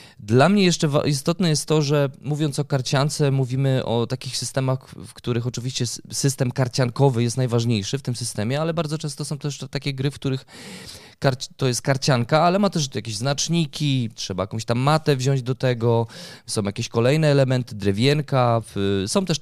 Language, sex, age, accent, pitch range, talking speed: Polish, male, 20-39, native, 115-150 Hz, 170 wpm